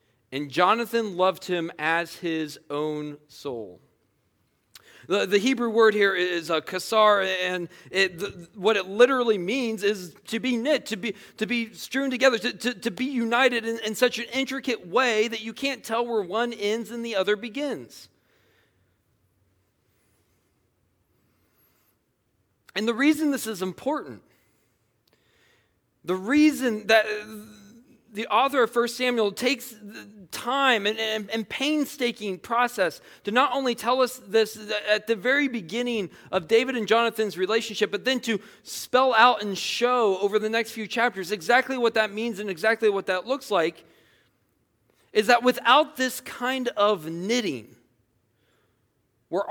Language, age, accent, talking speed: English, 40-59, American, 150 wpm